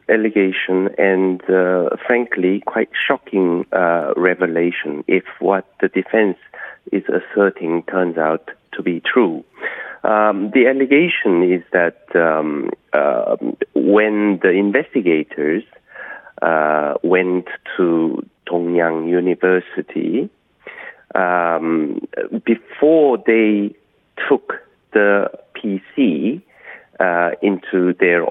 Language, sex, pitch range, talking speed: English, male, 90-120 Hz, 90 wpm